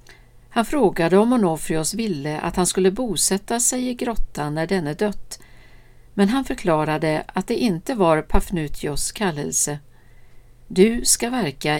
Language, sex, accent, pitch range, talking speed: Swedish, female, native, 145-210 Hz, 135 wpm